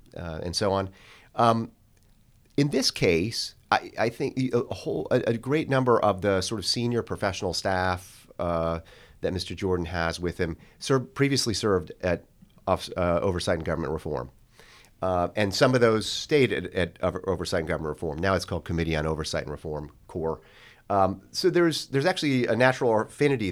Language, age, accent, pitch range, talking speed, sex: English, 30-49, American, 90-120 Hz, 180 wpm, male